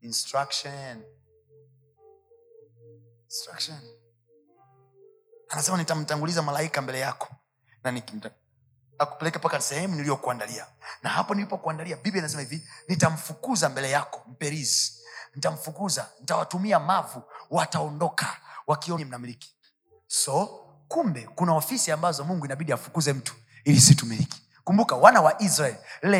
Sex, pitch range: male, 130-175 Hz